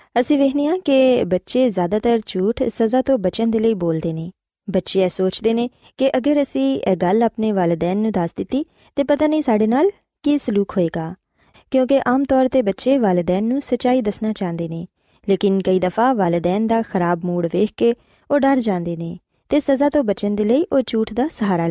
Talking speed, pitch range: 190 wpm, 185-260 Hz